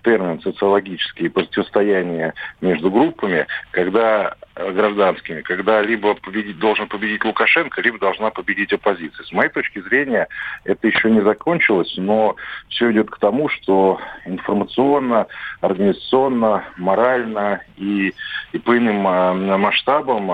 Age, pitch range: 50-69, 95-110 Hz